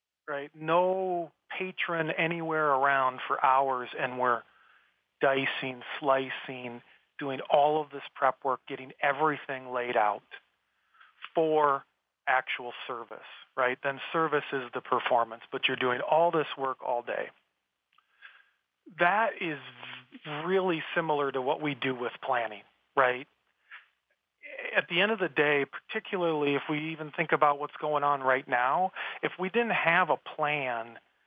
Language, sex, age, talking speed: English, male, 40-59, 140 wpm